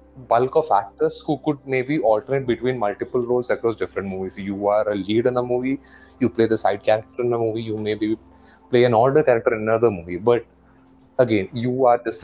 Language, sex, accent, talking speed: Malayalam, male, native, 210 wpm